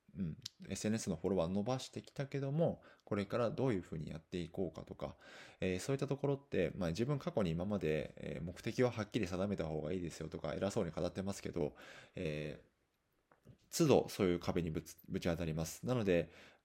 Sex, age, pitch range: male, 20-39, 80-105 Hz